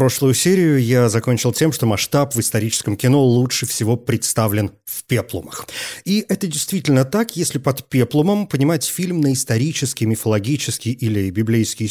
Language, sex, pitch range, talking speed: Russian, male, 115-150 Hz, 145 wpm